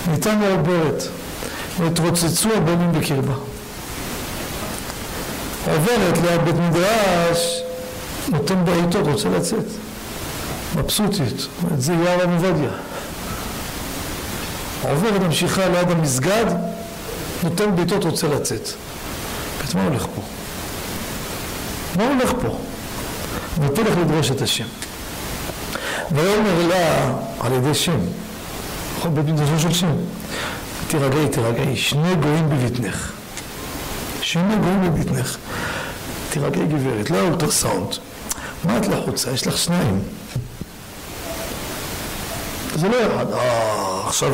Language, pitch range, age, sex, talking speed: Hebrew, 140-175 Hz, 60-79, male, 90 wpm